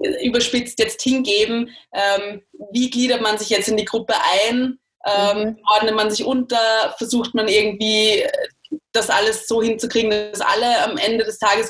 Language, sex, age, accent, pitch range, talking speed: German, female, 20-39, German, 210-255 Hz, 160 wpm